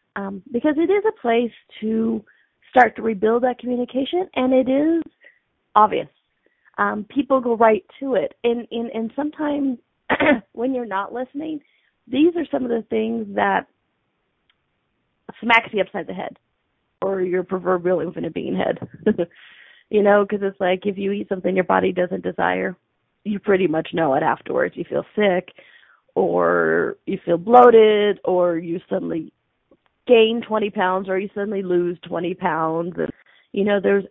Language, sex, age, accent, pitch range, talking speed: English, female, 30-49, American, 195-255 Hz, 160 wpm